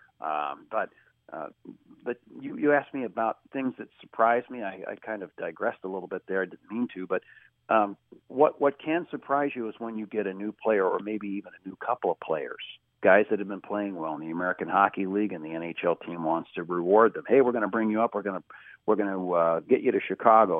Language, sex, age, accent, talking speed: English, male, 50-69, American, 250 wpm